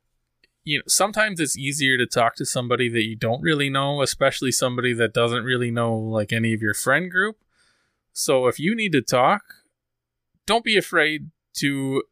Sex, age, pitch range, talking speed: male, 20-39, 120-165 Hz, 180 wpm